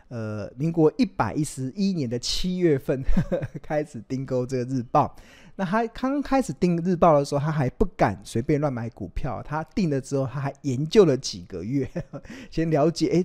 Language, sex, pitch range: Chinese, male, 120-160 Hz